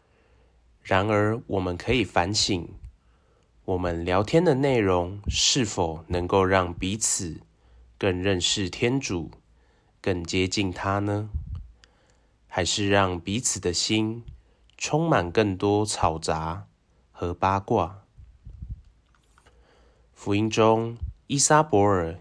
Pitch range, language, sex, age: 85-105 Hz, Chinese, male, 20-39